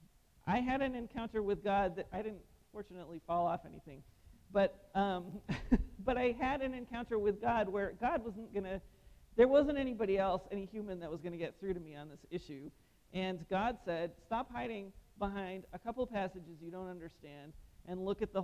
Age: 40-59